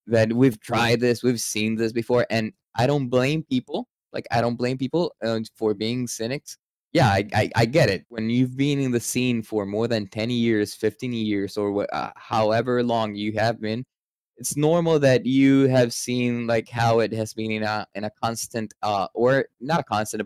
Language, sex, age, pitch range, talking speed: English, male, 20-39, 110-125 Hz, 200 wpm